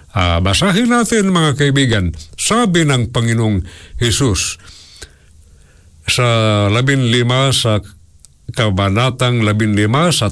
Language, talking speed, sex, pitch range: Filipino, 100 wpm, male, 100-145 Hz